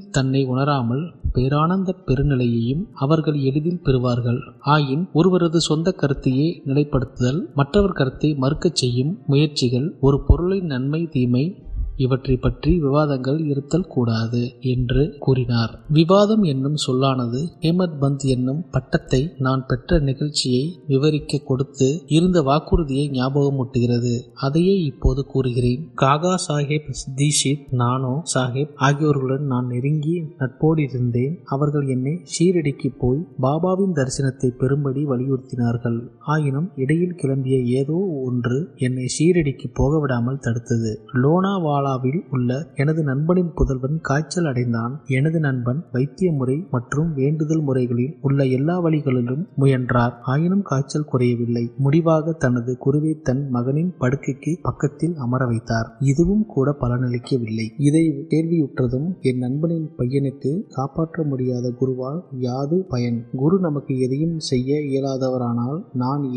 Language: Tamil